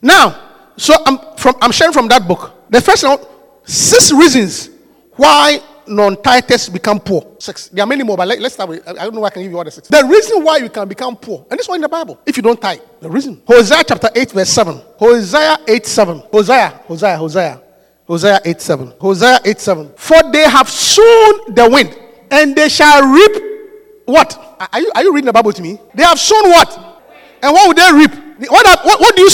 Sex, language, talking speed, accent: male, English, 230 wpm, Nigerian